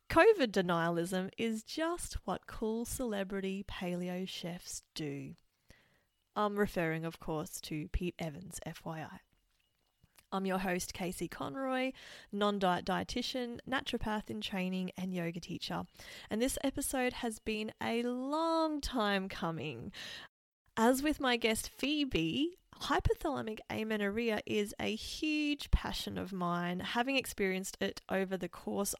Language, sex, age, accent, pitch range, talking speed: English, female, 20-39, Australian, 180-230 Hz, 120 wpm